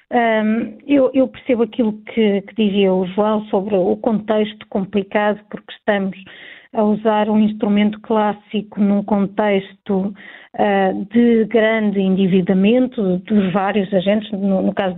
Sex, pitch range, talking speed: female, 200-235 Hz, 125 wpm